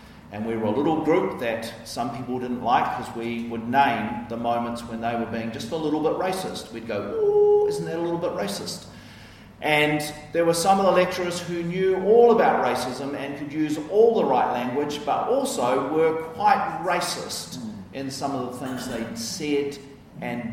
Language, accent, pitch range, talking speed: English, Australian, 110-145 Hz, 195 wpm